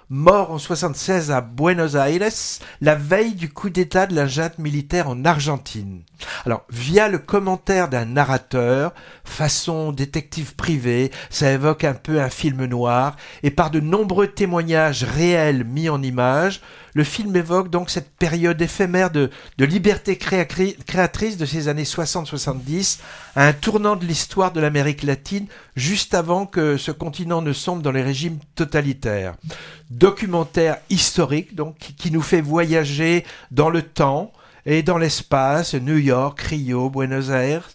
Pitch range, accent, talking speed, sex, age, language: 135-175 Hz, French, 155 wpm, male, 60-79, French